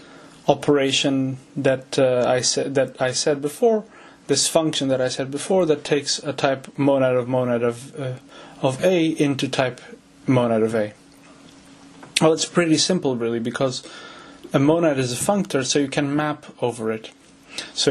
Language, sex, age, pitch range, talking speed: English, male, 30-49, 130-155 Hz, 165 wpm